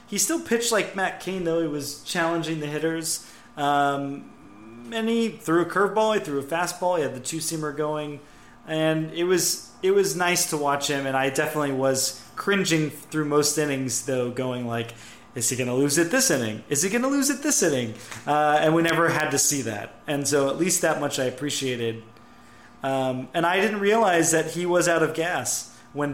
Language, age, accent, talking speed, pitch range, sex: English, 30-49, American, 210 wpm, 130-170 Hz, male